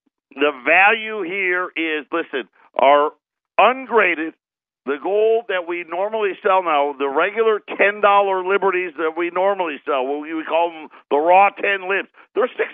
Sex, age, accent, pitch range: male, 50-69, American, 160-225 Hz